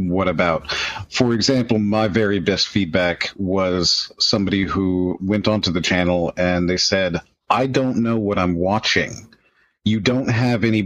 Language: English